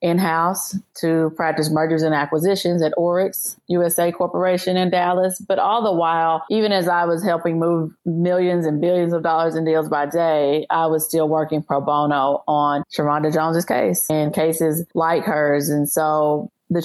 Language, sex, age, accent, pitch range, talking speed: English, female, 30-49, American, 155-180 Hz, 170 wpm